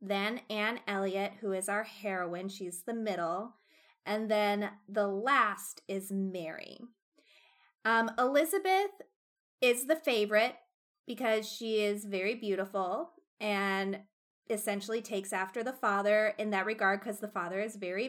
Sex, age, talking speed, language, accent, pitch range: female, 30-49, 135 wpm, English, American, 200-245 Hz